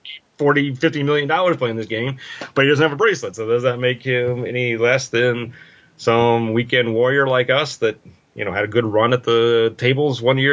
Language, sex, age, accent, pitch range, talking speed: English, male, 30-49, American, 105-140 Hz, 230 wpm